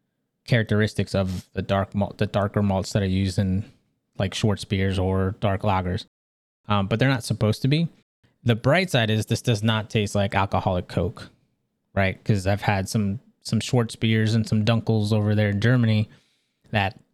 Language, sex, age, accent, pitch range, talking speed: English, male, 20-39, American, 100-120 Hz, 180 wpm